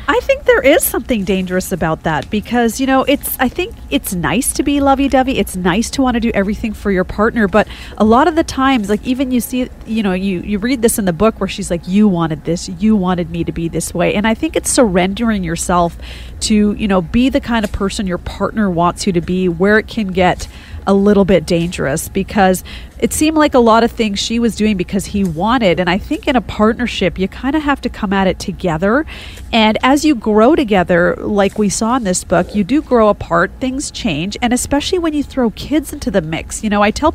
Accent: American